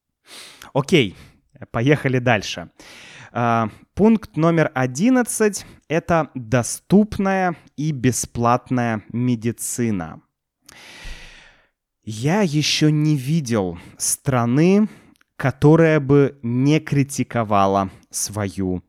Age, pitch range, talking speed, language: 20-39, 105-155 Hz, 65 wpm, Russian